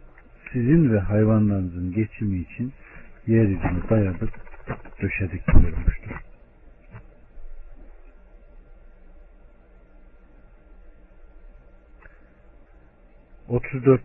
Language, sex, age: Turkish, male, 60-79